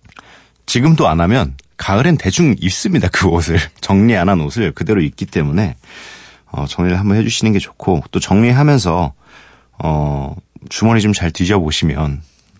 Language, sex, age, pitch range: Korean, male, 40-59, 75-110 Hz